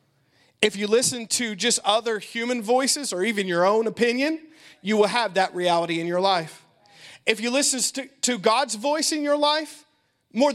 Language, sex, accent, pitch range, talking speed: English, male, American, 175-270 Hz, 180 wpm